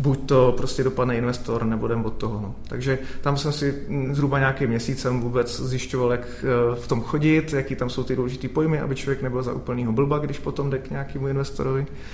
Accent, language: native, Czech